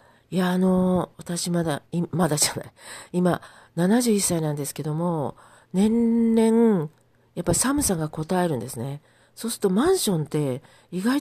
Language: Japanese